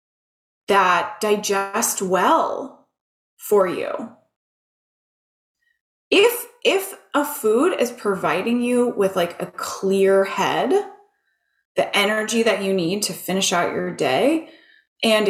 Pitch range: 190-270 Hz